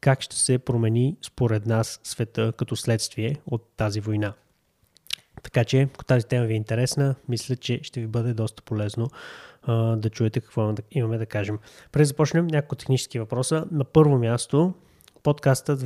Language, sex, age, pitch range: Bulgarian, male, 20-39, 115-135 Hz